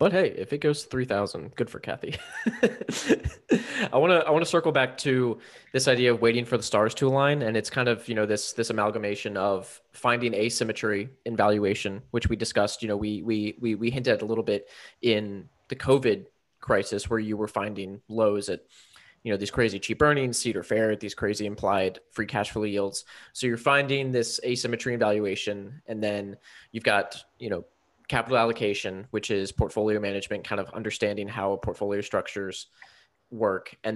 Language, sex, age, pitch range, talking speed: English, male, 20-39, 105-120 Hz, 195 wpm